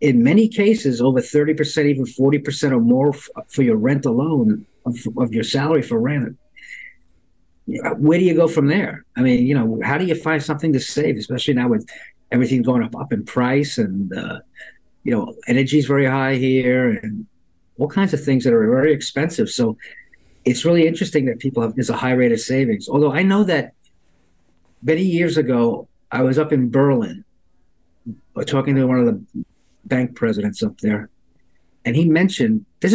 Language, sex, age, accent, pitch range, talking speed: English, male, 50-69, American, 125-160 Hz, 185 wpm